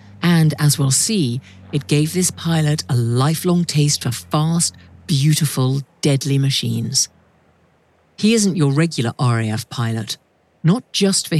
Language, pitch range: English, 130-180 Hz